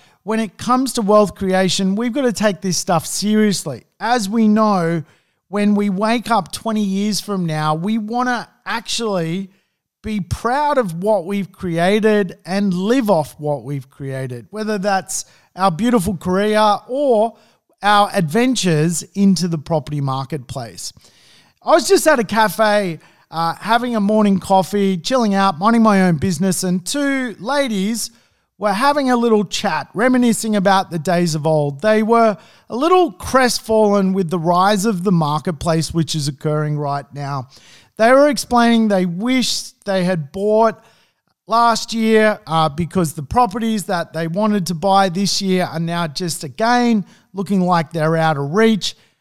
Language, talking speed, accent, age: English, 160 wpm, Australian, 40-59